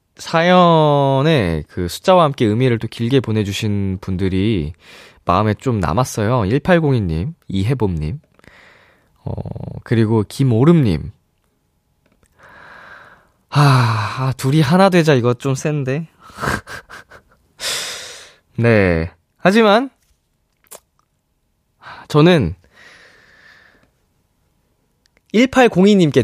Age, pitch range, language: 20-39, 105-175 Hz, Korean